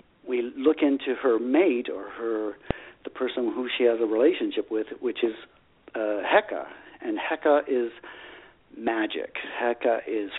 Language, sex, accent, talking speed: English, male, American, 145 wpm